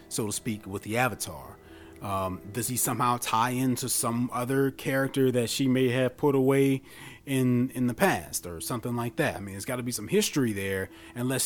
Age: 30-49